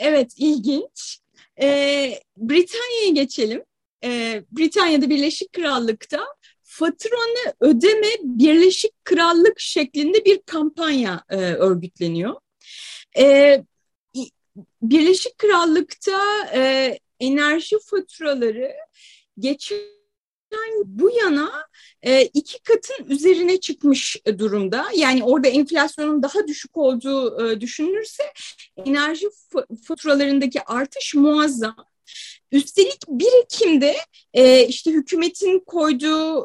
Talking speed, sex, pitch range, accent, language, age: 90 wpm, female, 265-385 Hz, native, Turkish, 30-49